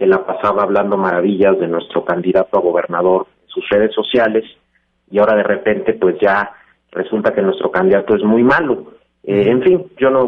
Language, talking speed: Spanish, 195 wpm